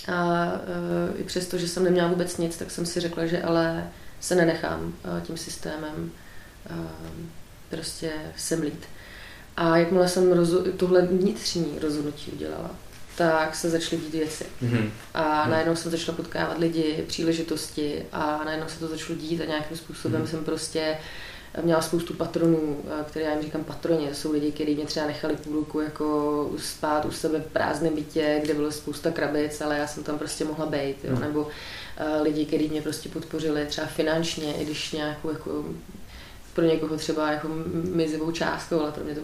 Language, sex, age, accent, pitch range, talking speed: Czech, female, 30-49, native, 150-170 Hz, 165 wpm